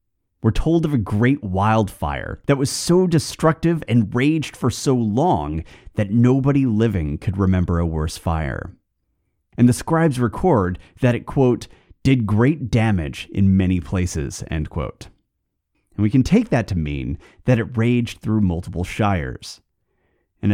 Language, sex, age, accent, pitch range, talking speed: English, male, 30-49, American, 85-120 Hz, 150 wpm